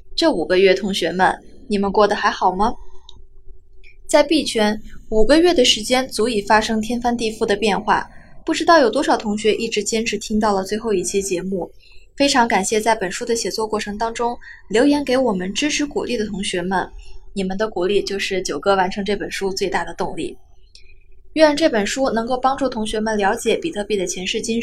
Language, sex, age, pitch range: Chinese, female, 20-39, 195-255 Hz